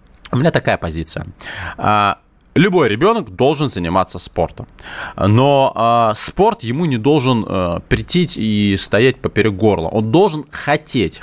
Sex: male